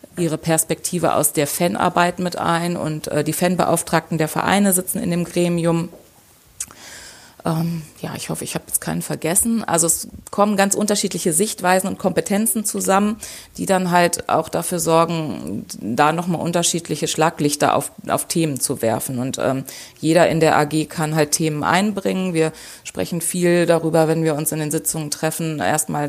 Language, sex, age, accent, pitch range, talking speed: German, female, 30-49, German, 155-185 Hz, 160 wpm